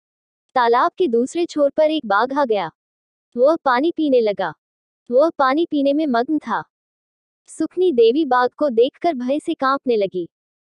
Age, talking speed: 20-39, 165 wpm